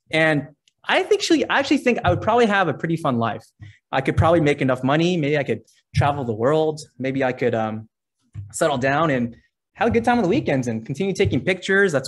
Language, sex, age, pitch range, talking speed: English, male, 20-39, 120-160 Hz, 215 wpm